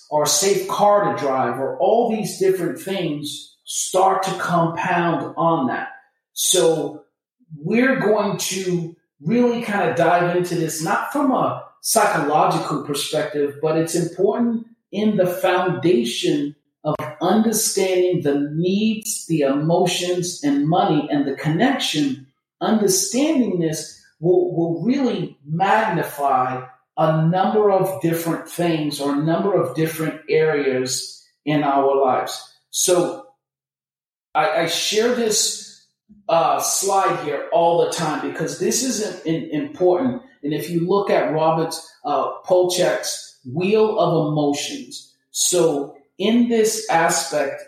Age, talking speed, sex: 40-59, 125 wpm, male